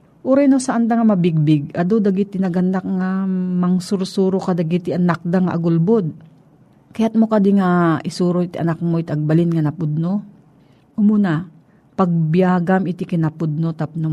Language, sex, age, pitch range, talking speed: Filipino, female, 40-59, 165-205 Hz, 155 wpm